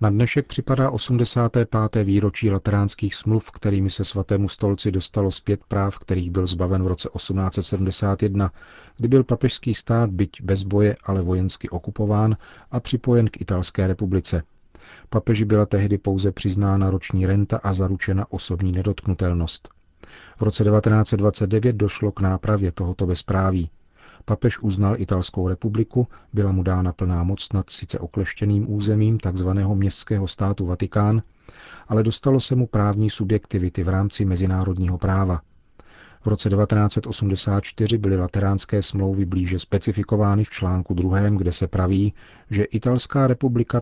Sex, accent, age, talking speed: male, native, 40-59, 135 wpm